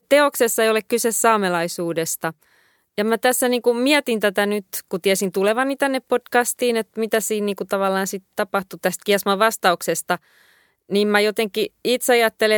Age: 20-39